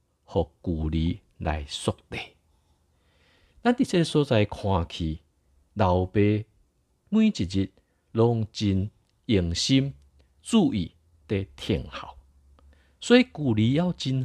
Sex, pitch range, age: male, 70-115 Hz, 50-69